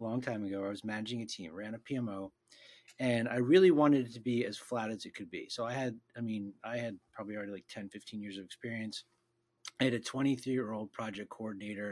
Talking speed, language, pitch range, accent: 225 wpm, English, 105-130 Hz, American